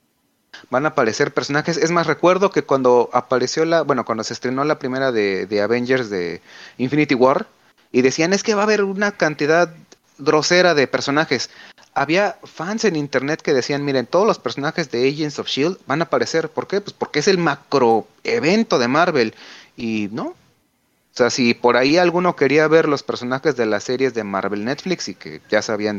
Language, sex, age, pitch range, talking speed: Spanish, male, 30-49, 125-175 Hz, 195 wpm